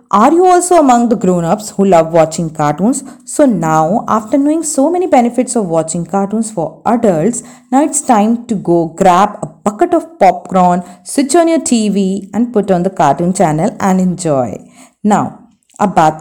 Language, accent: Hindi, native